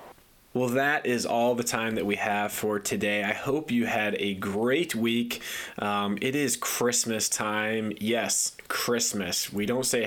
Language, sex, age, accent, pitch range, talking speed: English, male, 20-39, American, 100-120 Hz, 165 wpm